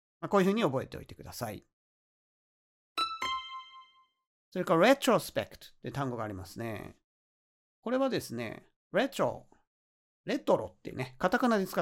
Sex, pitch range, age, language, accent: male, 125-195 Hz, 40-59, Japanese, native